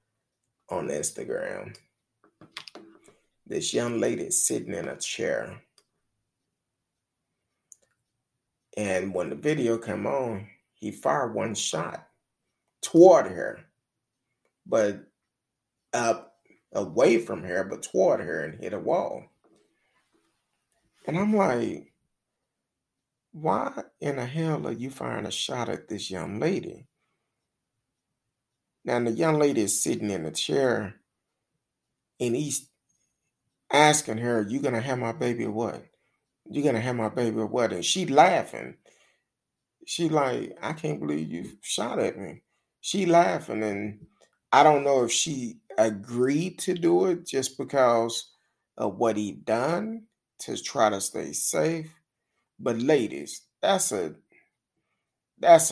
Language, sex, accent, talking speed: English, male, American, 125 wpm